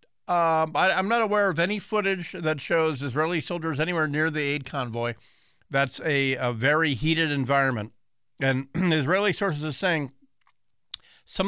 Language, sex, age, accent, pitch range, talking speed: English, male, 50-69, American, 130-160 Hz, 150 wpm